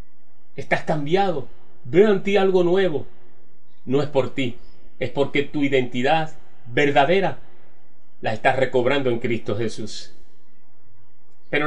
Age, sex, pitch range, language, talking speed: 40-59, male, 115-175 Hz, Spanish, 120 wpm